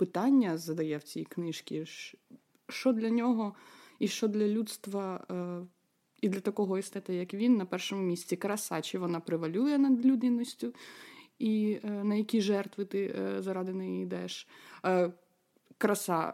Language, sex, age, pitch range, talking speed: Ukrainian, female, 20-39, 175-230 Hz, 130 wpm